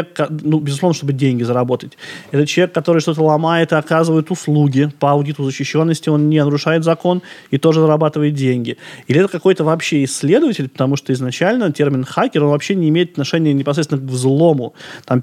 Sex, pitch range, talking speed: male, 135-160 Hz, 170 wpm